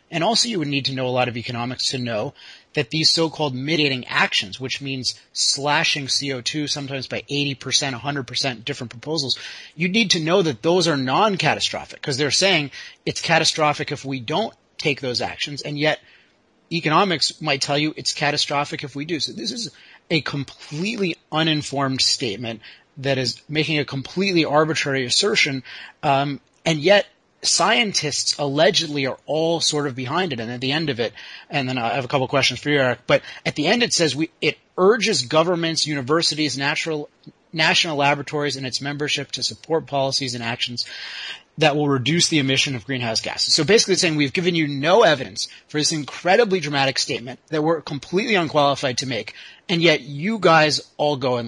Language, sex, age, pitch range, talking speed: English, male, 30-49, 135-160 Hz, 185 wpm